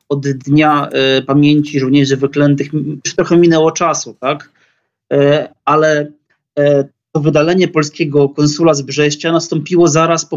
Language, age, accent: Polish, 30-49, native